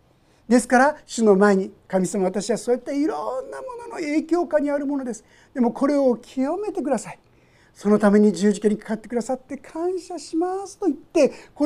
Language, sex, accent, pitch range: Japanese, male, native, 200-310 Hz